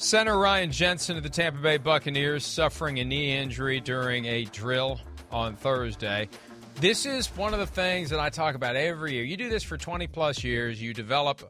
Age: 40-59